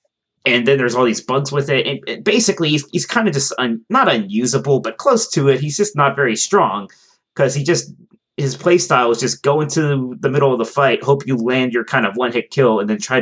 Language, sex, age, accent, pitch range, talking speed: English, male, 30-49, American, 110-145 Hz, 240 wpm